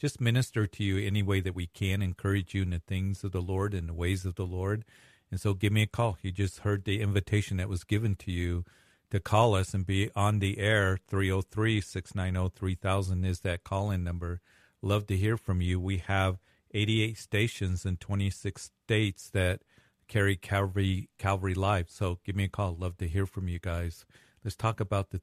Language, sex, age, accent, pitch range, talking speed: English, male, 50-69, American, 90-105 Hz, 200 wpm